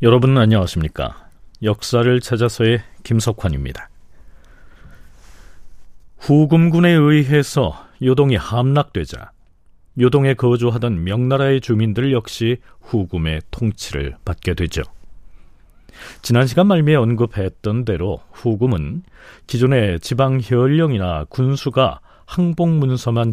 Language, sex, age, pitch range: Korean, male, 40-59, 90-140 Hz